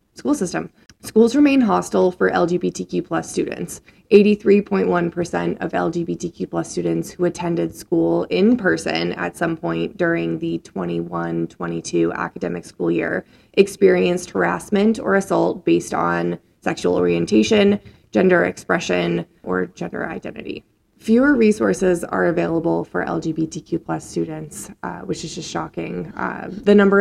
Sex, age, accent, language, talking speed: female, 20-39, American, English, 125 wpm